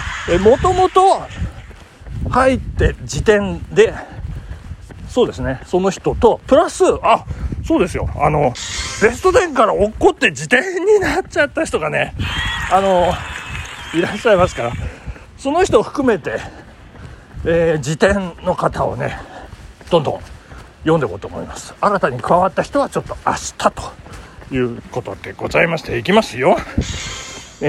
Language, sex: Japanese, male